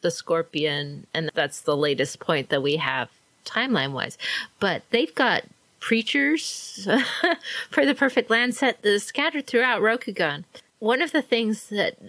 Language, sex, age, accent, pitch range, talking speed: English, female, 30-49, American, 170-220 Hz, 140 wpm